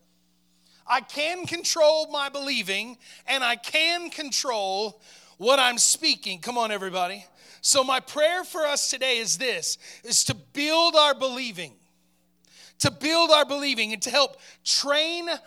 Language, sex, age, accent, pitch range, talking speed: English, male, 30-49, American, 220-300 Hz, 140 wpm